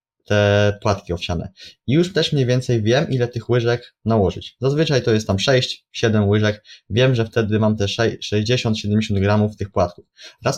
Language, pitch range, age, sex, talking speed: Polish, 105-120 Hz, 20-39, male, 165 wpm